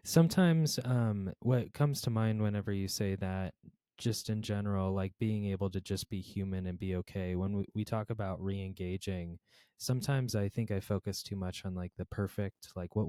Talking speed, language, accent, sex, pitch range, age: 195 wpm, English, American, male, 95-110 Hz, 20-39